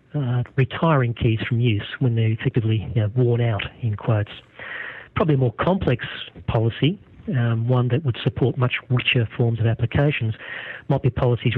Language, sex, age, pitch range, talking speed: English, male, 40-59, 115-130 Hz, 165 wpm